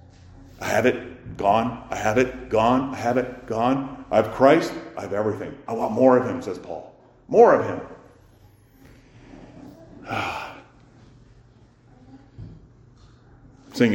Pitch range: 120-160 Hz